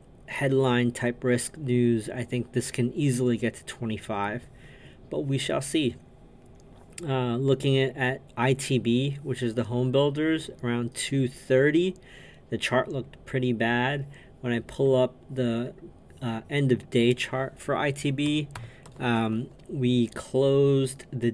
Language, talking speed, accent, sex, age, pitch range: English, 130 wpm, American, male, 40-59, 120-135 Hz